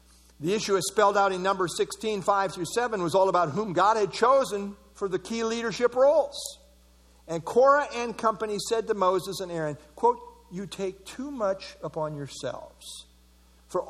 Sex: male